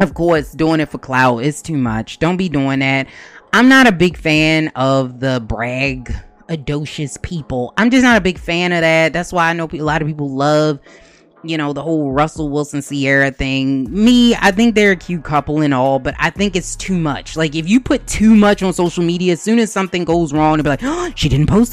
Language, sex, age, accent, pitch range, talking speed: English, female, 20-39, American, 145-210 Hz, 235 wpm